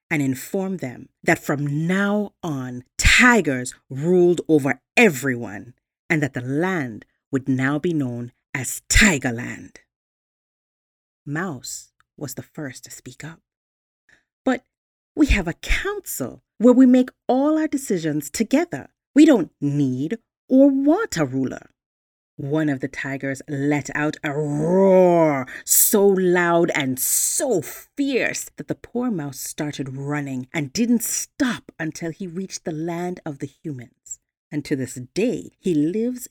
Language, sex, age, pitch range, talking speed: English, female, 40-59, 135-190 Hz, 135 wpm